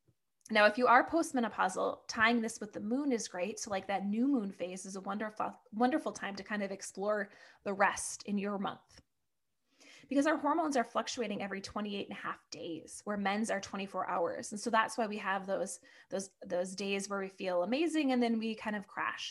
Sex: female